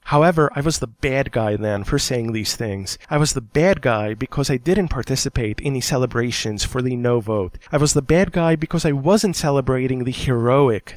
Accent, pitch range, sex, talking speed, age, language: American, 120-165 Hz, male, 210 wpm, 20-39, English